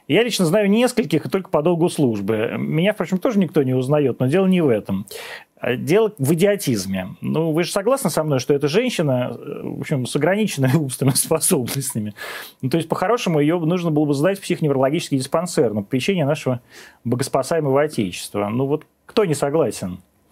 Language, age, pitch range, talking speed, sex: Russian, 30-49, 135-190 Hz, 175 wpm, male